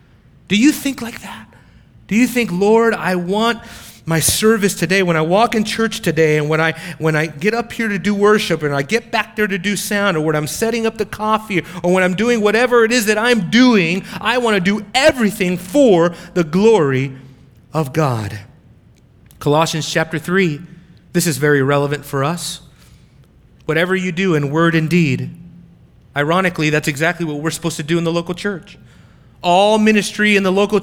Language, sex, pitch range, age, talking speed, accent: English, male, 155-210 Hz, 30-49, 195 wpm, American